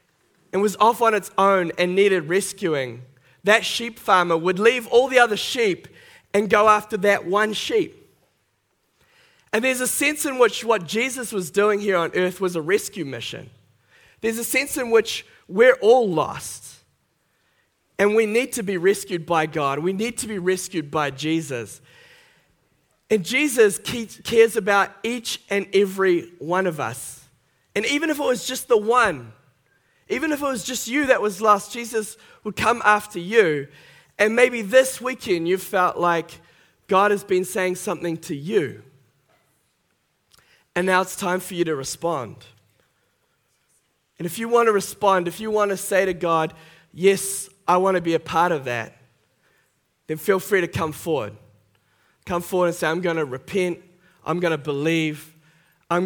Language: English